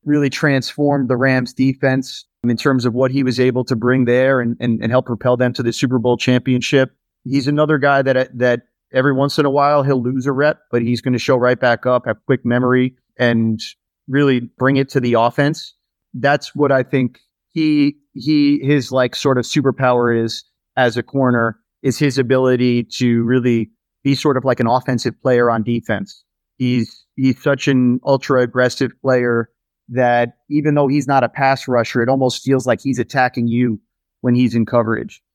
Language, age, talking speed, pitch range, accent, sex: English, 30-49, 195 wpm, 125-140 Hz, American, male